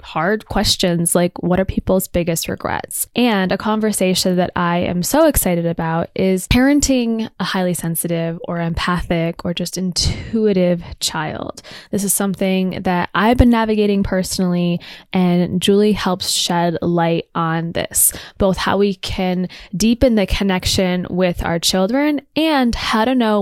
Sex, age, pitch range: female, 10-29, 180-220 Hz